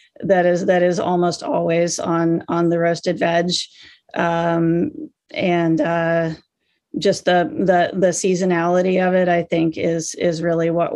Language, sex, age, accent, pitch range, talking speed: English, female, 40-59, American, 170-205 Hz, 150 wpm